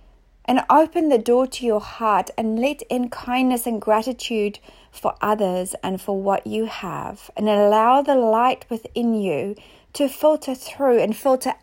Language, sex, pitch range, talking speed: English, female, 200-245 Hz, 160 wpm